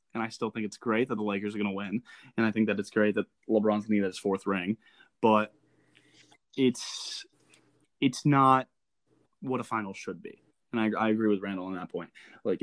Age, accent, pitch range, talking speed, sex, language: 20-39, American, 110-130 Hz, 220 wpm, male, English